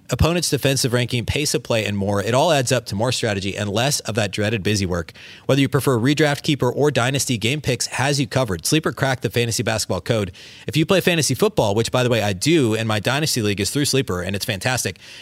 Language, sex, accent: English, male, American